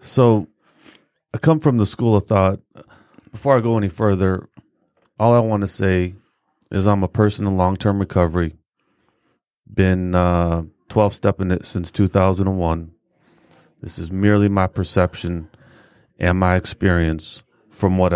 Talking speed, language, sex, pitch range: 140 wpm, English, male, 90-110 Hz